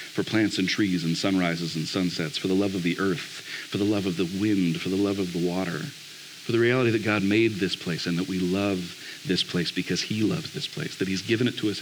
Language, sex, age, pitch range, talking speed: English, male, 40-59, 95-130 Hz, 260 wpm